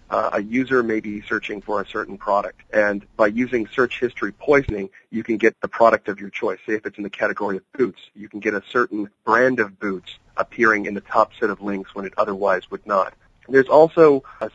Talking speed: 225 wpm